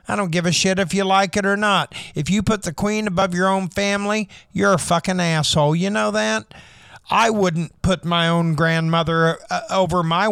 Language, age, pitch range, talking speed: English, 50-69, 170-215 Hz, 205 wpm